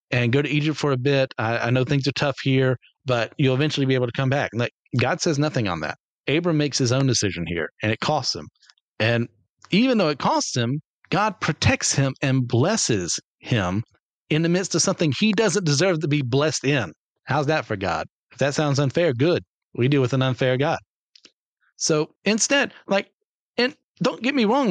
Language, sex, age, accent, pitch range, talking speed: English, male, 40-59, American, 130-185 Hz, 205 wpm